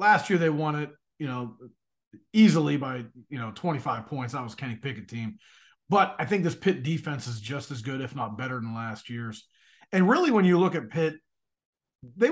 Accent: American